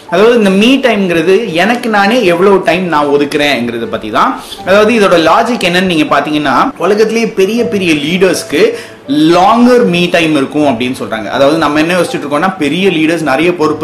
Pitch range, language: 145-190 Hz, Tamil